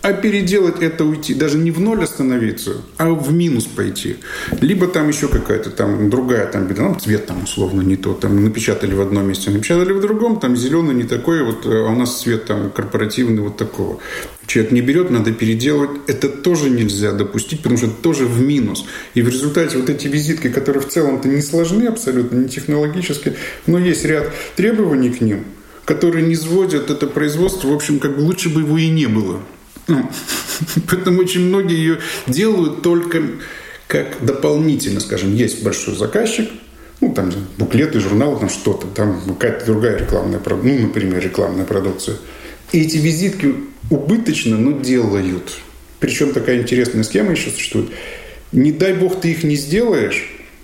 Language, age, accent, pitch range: Russian, 20-39, native, 110-170 Hz